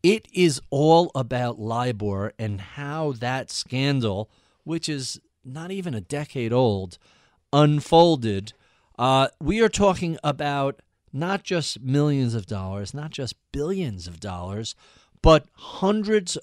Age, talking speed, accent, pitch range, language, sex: 40-59, 125 wpm, American, 105-150 Hz, English, male